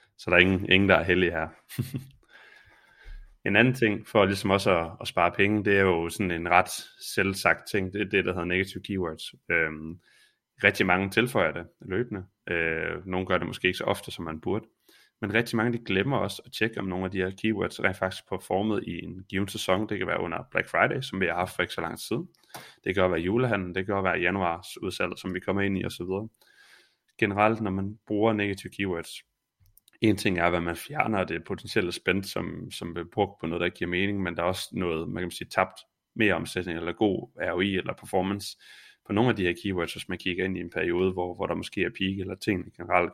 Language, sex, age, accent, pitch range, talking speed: Danish, male, 20-39, native, 90-100 Hz, 230 wpm